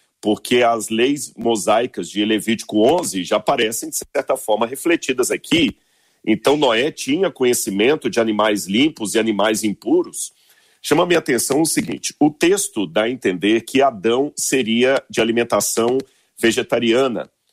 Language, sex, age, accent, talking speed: Portuguese, male, 40-59, Brazilian, 140 wpm